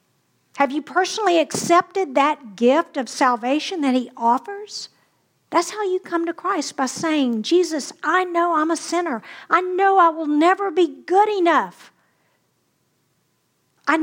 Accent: American